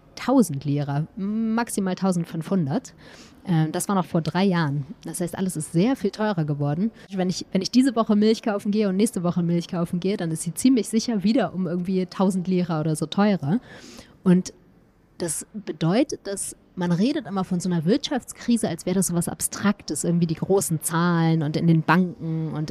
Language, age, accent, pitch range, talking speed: German, 20-39, German, 165-200 Hz, 185 wpm